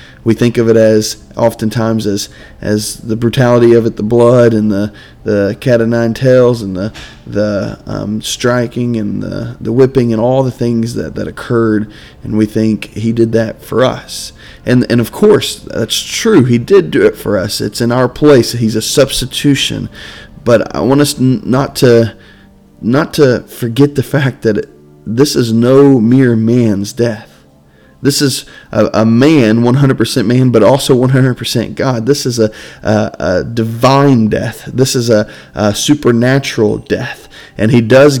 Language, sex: English, male